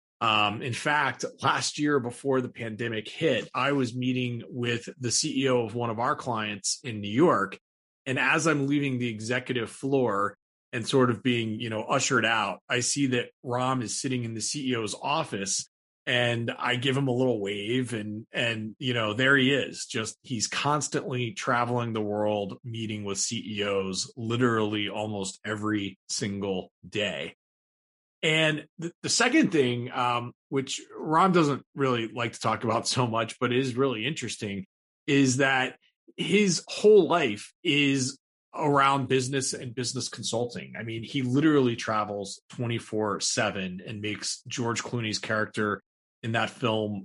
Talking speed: 155 wpm